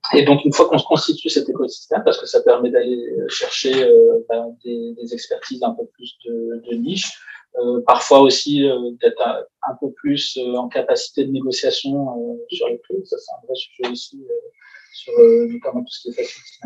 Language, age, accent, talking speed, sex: French, 30-49, French, 215 wpm, male